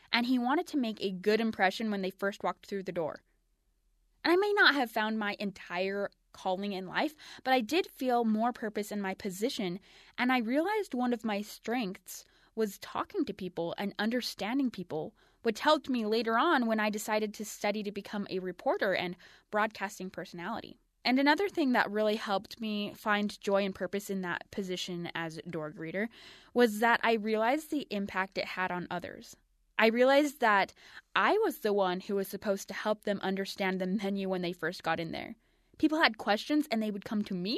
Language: English